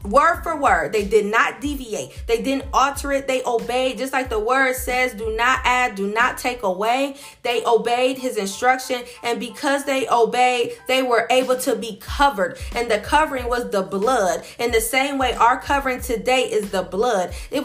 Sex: female